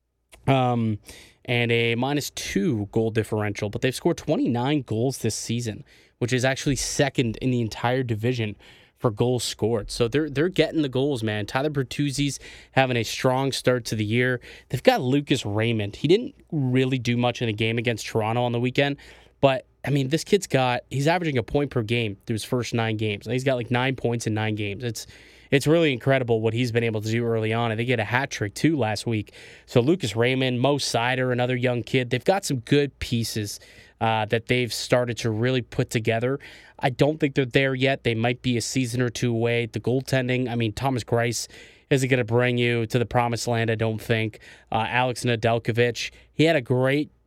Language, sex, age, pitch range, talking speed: English, male, 20-39, 115-135 Hz, 210 wpm